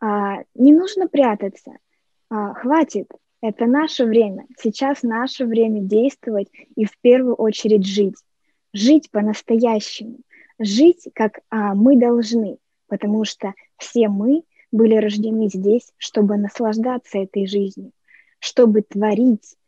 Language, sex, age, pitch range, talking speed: Russian, female, 20-39, 205-250 Hz, 105 wpm